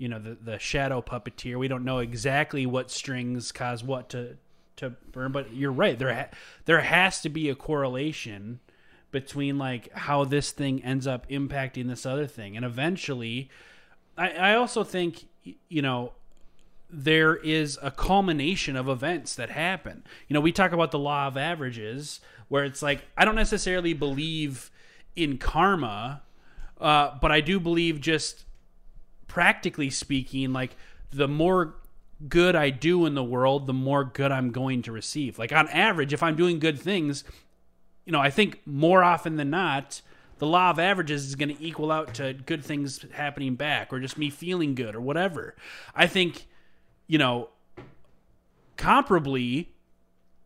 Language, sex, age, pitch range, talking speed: English, male, 30-49, 130-165 Hz, 165 wpm